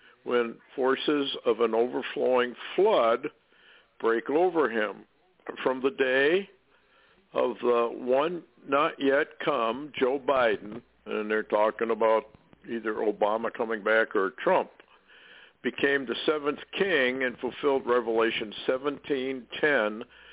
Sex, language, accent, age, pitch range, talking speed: male, English, American, 60-79, 115-140 Hz, 110 wpm